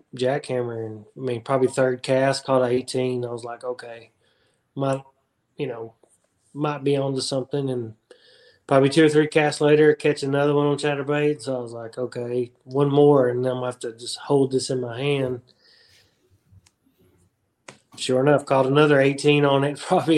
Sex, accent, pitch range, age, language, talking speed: male, American, 125-145 Hz, 20-39, English, 185 wpm